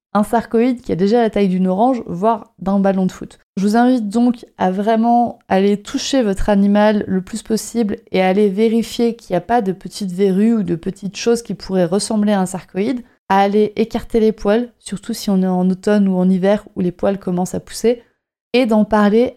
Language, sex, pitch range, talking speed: French, female, 195-230 Hz, 215 wpm